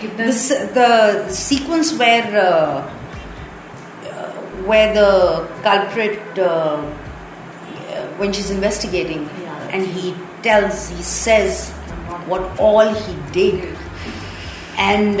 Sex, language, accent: female, Hindi, native